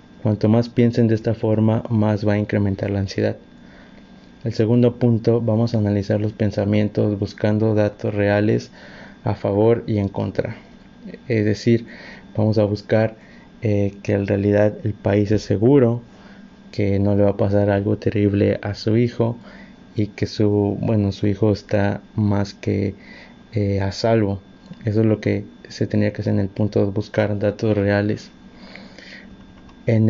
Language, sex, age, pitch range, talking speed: Spanish, male, 30-49, 105-115 Hz, 160 wpm